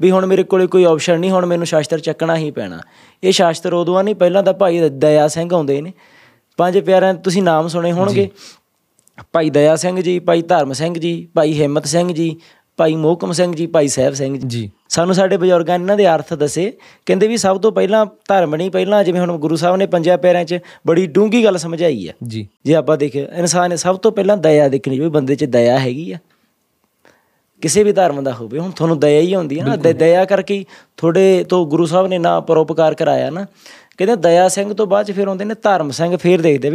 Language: Punjabi